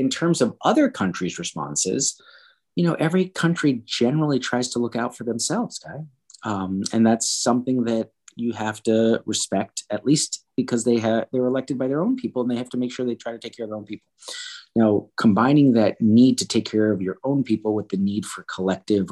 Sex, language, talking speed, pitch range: male, English, 220 wpm, 110-160 Hz